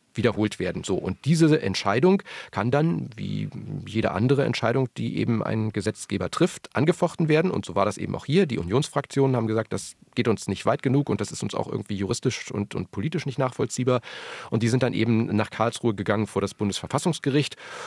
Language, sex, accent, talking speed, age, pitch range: German, male, German, 200 wpm, 40-59, 110-140 Hz